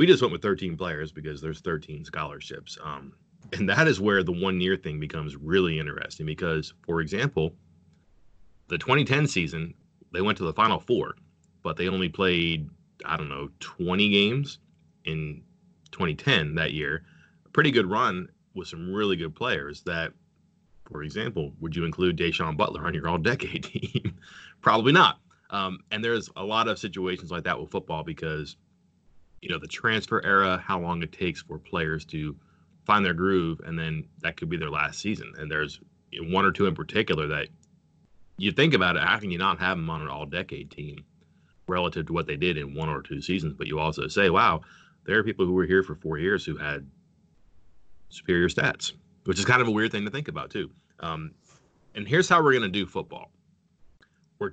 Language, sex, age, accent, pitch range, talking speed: English, male, 30-49, American, 75-95 Hz, 195 wpm